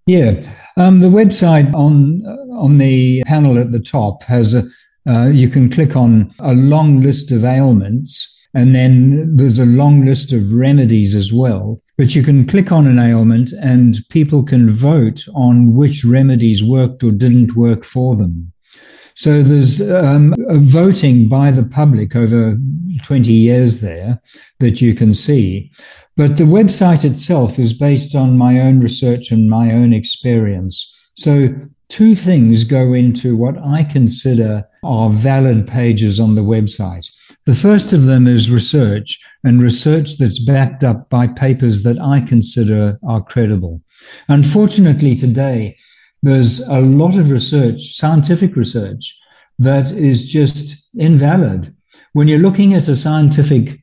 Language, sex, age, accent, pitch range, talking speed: English, male, 60-79, British, 120-145 Hz, 145 wpm